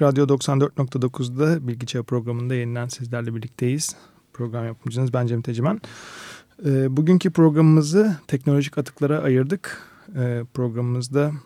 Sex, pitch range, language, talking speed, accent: male, 120-140 Hz, Turkish, 100 wpm, native